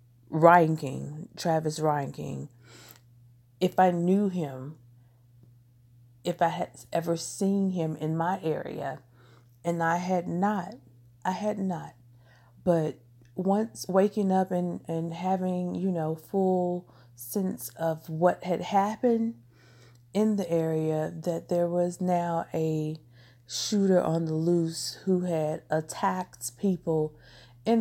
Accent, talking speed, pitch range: American, 125 wpm, 125-180 Hz